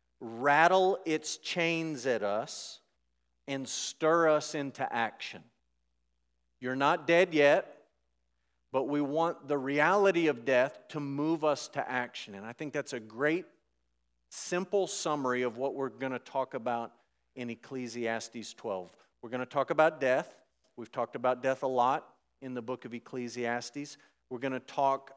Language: English